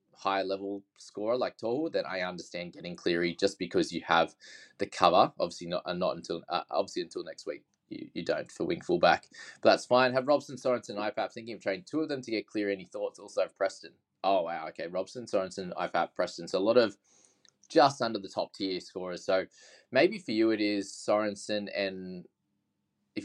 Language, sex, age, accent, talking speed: English, male, 20-39, Australian, 205 wpm